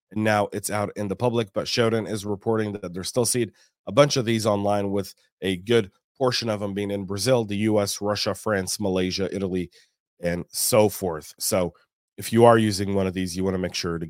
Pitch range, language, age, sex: 100-125 Hz, English, 30-49, male